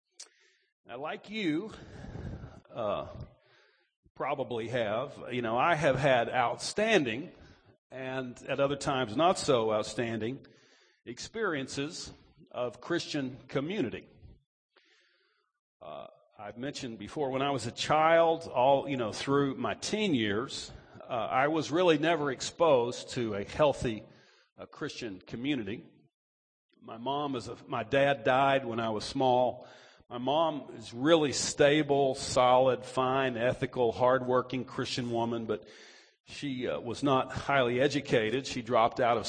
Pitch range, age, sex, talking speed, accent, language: 120-140 Hz, 50-69, male, 130 wpm, American, English